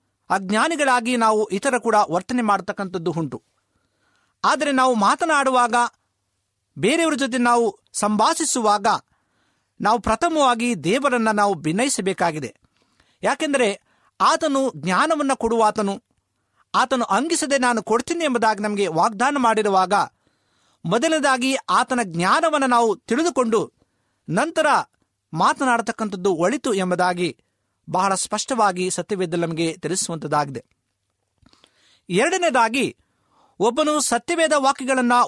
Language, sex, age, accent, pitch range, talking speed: Kannada, male, 50-69, native, 185-270 Hz, 85 wpm